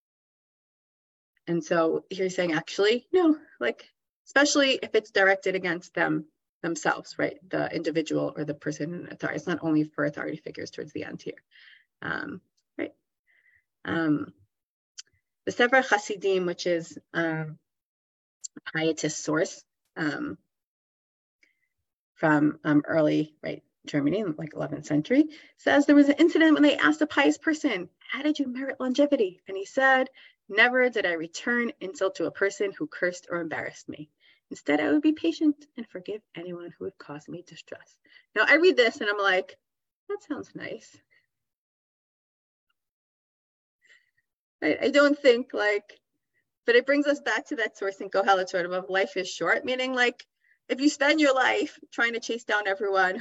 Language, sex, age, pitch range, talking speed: English, female, 30-49, 165-265 Hz, 160 wpm